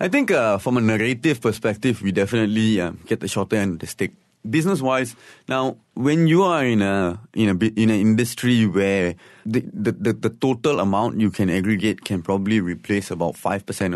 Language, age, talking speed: English, 30-49, 200 wpm